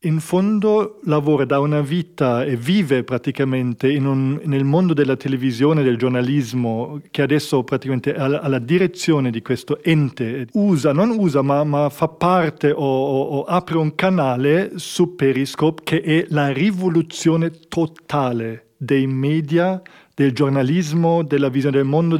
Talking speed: 145 wpm